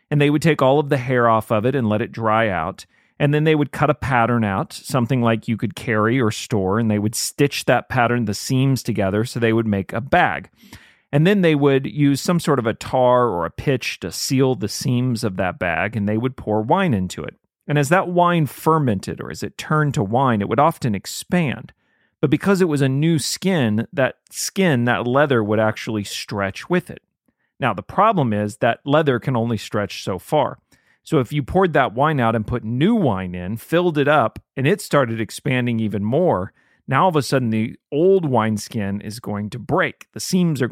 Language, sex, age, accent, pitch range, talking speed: English, male, 40-59, American, 110-150 Hz, 225 wpm